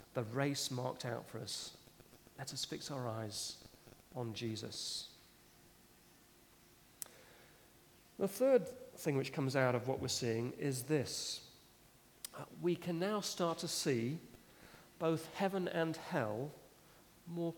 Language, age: English, 40-59